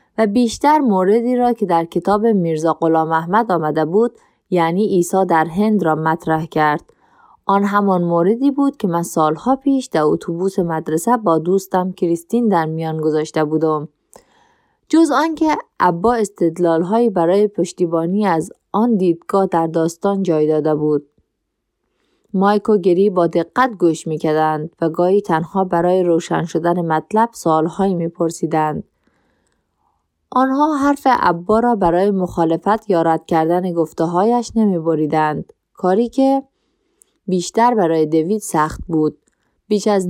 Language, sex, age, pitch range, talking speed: Persian, female, 20-39, 165-225 Hz, 130 wpm